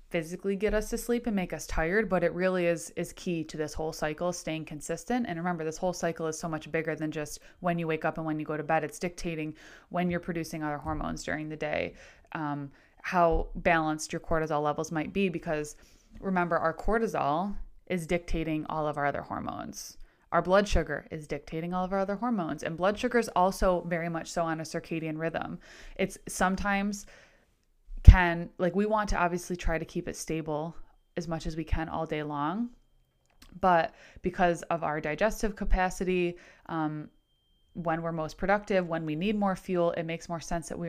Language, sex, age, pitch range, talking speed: English, female, 20-39, 155-180 Hz, 200 wpm